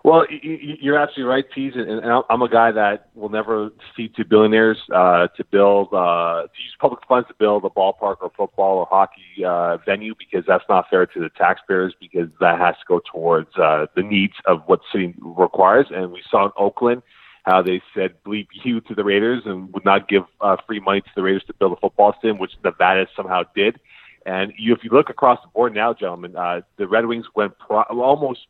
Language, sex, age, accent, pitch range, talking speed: English, male, 30-49, American, 95-115 Hz, 215 wpm